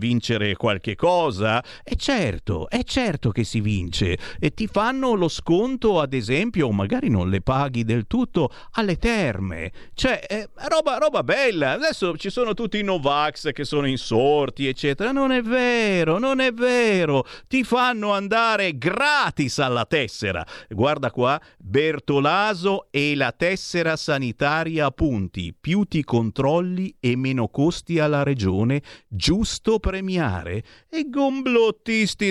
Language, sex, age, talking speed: Italian, male, 50-69, 135 wpm